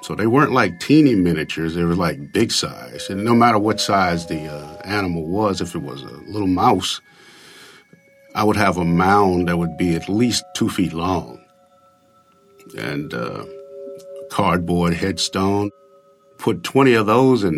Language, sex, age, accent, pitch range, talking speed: English, male, 50-69, American, 80-130 Hz, 165 wpm